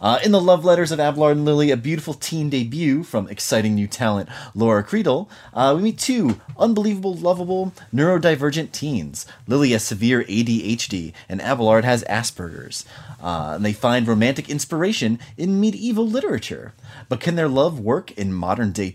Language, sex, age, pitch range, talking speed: English, male, 30-49, 110-170 Hz, 160 wpm